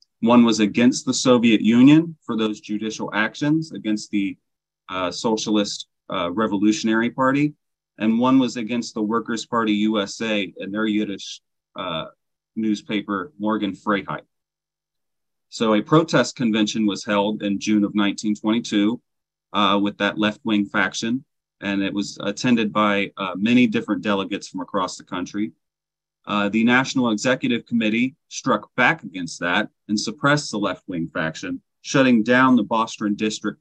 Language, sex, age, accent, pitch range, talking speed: English, male, 30-49, American, 105-120 Hz, 140 wpm